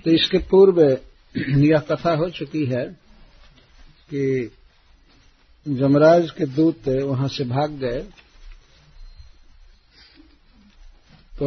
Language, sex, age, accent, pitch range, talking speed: Hindi, male, 50-69, native, 130-155 Hz, 90 wpm